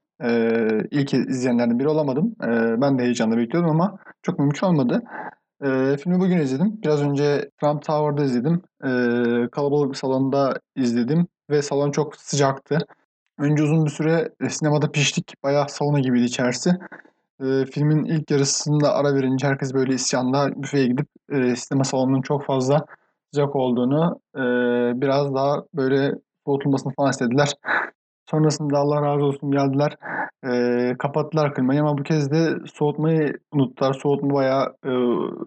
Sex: male